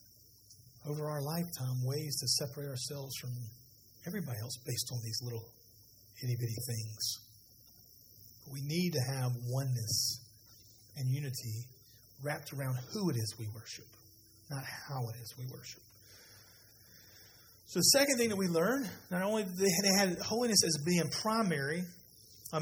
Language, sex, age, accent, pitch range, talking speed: English, male, 40-59, American, 120-180 Hz, 145 wpm